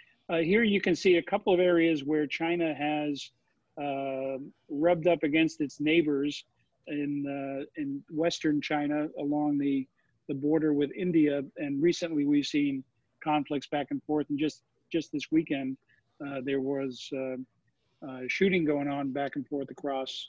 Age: 50-69